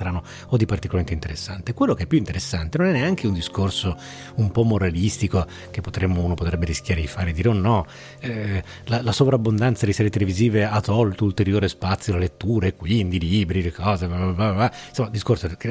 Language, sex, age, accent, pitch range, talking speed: Italian, male, 30-49, native, 90-125 Hz, 205 wpm